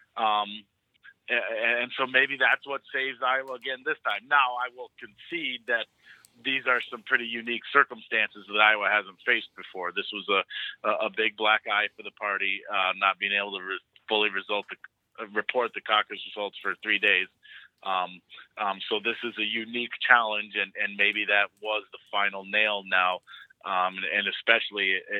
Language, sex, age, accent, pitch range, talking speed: English, male, 30-49, American, 95-110 Hz, 175 wpm